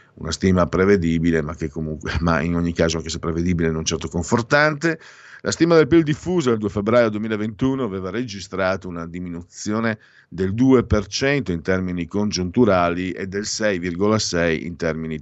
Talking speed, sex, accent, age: 155 wpm, male, native, 50-69